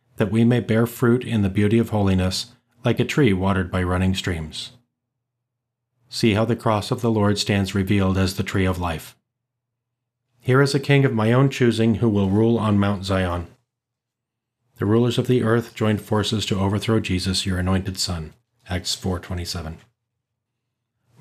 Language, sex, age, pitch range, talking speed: English, male, 40-59, 100-120 Hz, 170 wpm